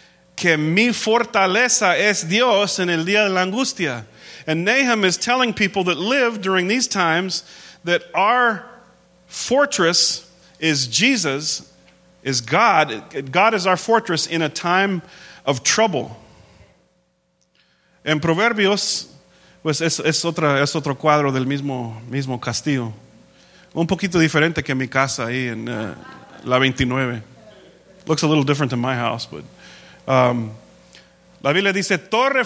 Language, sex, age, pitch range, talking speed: English, male, 40-59, 150-215 Hz, 135 wpm